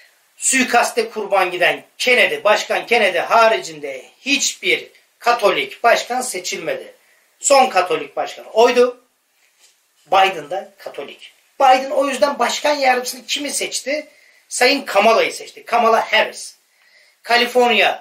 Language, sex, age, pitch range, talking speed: Turkish, male, 40-59, 225-290 Hz, 105 wpm